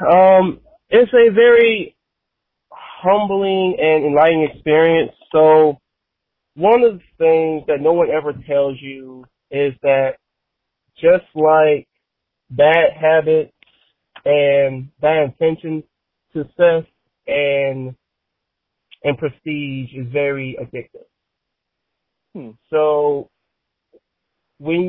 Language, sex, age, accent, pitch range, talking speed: English, male, 30-49, American, 145-180 Hz, 90 wpm